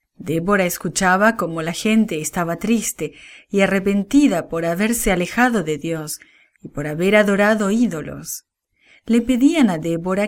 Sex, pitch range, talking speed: female, 160-235 Hz, 135 wpm